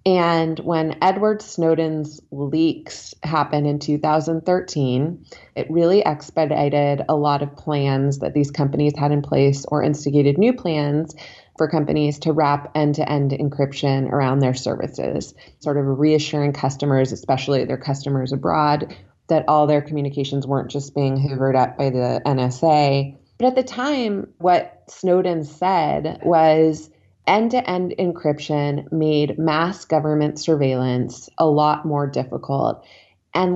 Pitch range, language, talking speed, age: 145-170 Hz, English, 135 wpm, 20-39